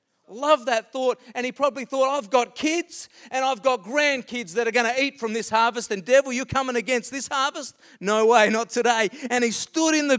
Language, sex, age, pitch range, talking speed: English, male, 40-59, 150-245 Hz, 225 wpm